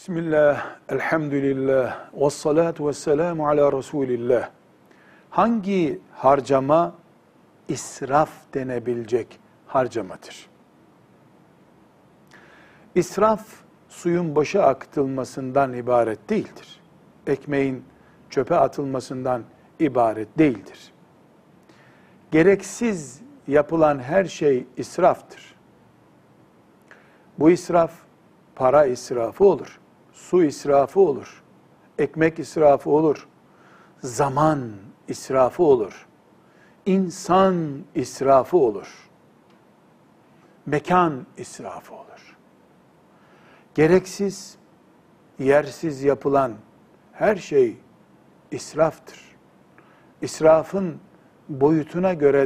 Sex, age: male, 60-79